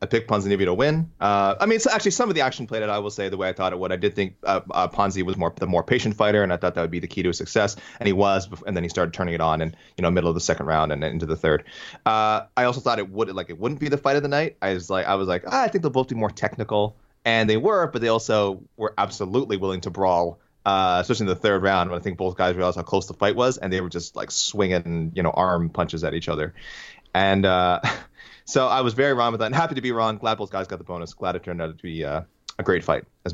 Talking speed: 310 wpm